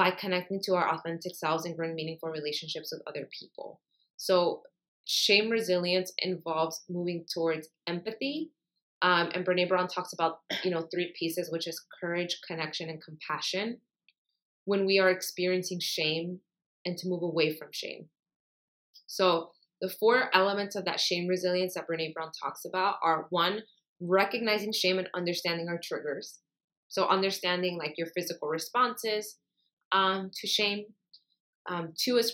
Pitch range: 165-195 Hz